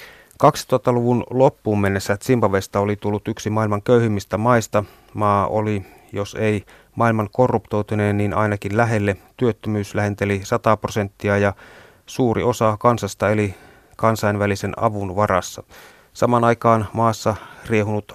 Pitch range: 100-115 Hz